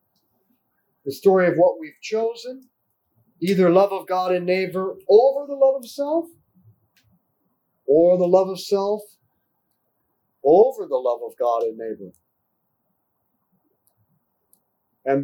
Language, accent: English, American